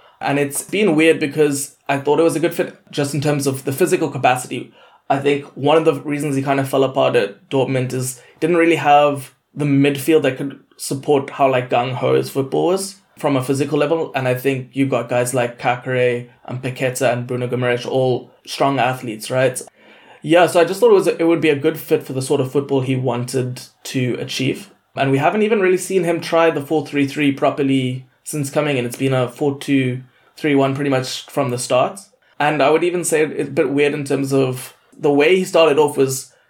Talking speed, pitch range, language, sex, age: 215 wpm, 130-155 Hz, English, male, 20-39